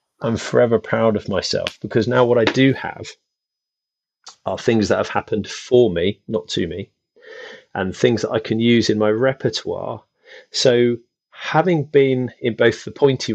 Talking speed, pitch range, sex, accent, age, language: 165 wpm, 105-125 Hz, male, British, 30-49, English